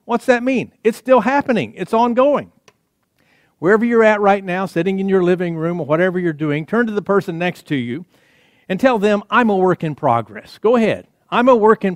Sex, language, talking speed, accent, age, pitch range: male, English, 215 wpm, American, 50-69, 165-220 Hz